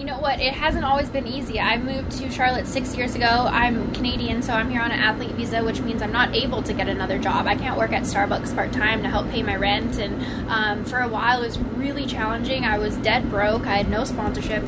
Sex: female